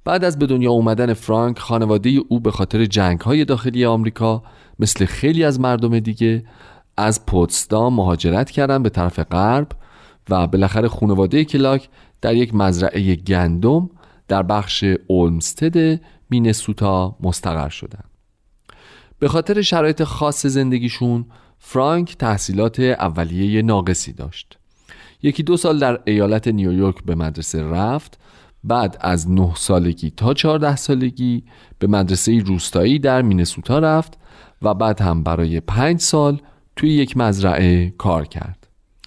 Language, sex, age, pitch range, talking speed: Persian, male, 40-59, 95-135 Hz, 125 wpm